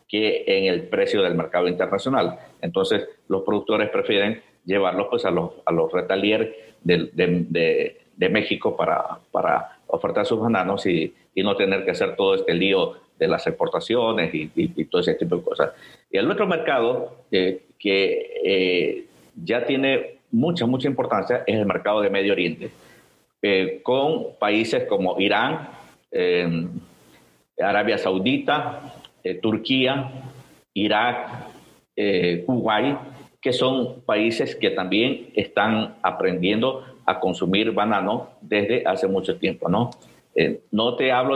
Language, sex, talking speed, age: Spanish, male, 140 wpm, 50-69